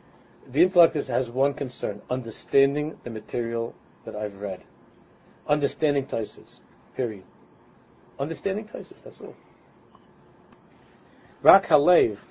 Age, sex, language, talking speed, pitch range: 50-69, male, English, 95 wpm, 120-165 Hz